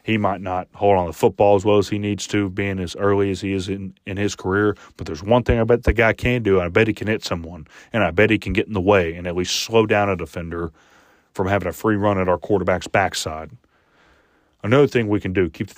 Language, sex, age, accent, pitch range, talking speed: English, male, 30-49, American, 90-110 Hz, 275 wpm